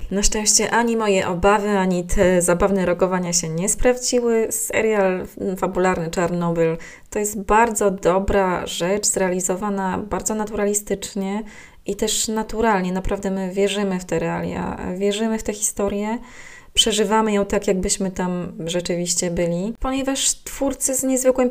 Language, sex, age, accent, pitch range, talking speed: Polish, female, 20-39, native, 180-220 Hz, 130 wpm